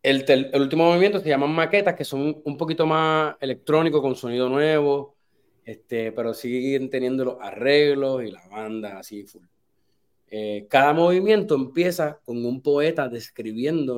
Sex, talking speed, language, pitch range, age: male, 155 wpm, Spanish, 115-150 Hz, 30-49